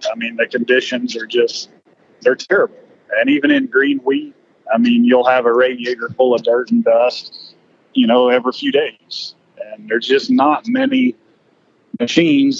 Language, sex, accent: English, male, American